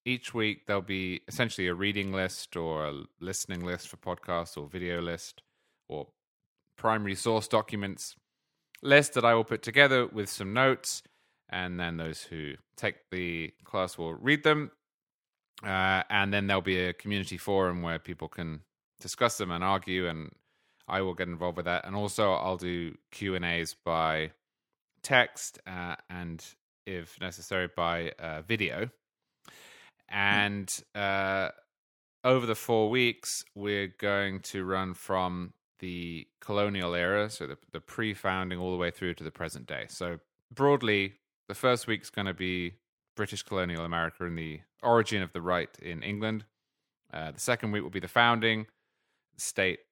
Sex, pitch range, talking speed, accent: male, 90-105 Hz, 155 wpm, British